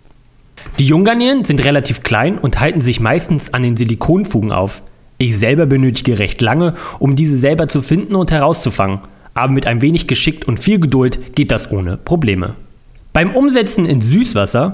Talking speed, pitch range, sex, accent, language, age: 165 wpm, 120-180 Hz, male, German, German, 30-49